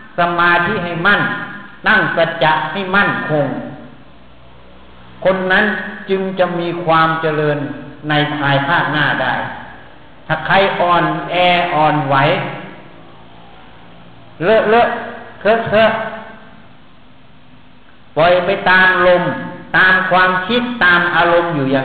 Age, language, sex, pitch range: 60-79, Thai, male, 130-180 Hz